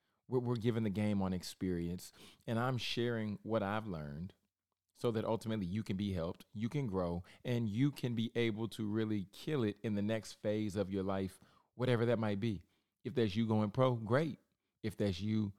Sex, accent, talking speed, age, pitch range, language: male, American, 200 wpm, 30-49, 100-120 Hz, English